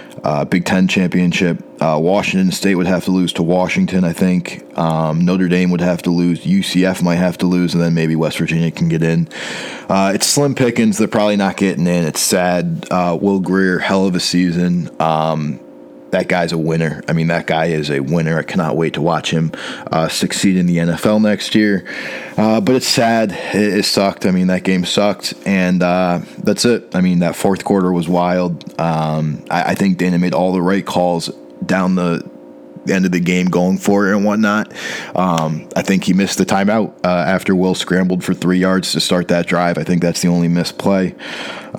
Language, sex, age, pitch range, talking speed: English, male, 20-39, 85-95 Hz, 210 wpm